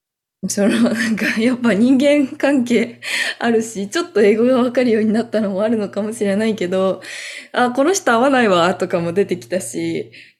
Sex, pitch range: female, 180-240 Hz